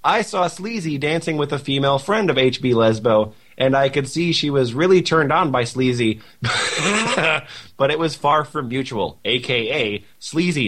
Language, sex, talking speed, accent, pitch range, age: English, male, 170 wpm, American, 125-160 Hz, 30-49